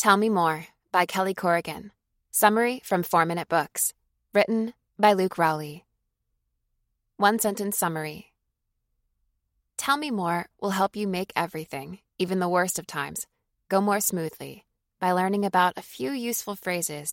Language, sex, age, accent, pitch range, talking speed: English, female, 20-39, American, 165-205 Hz, 135 wpm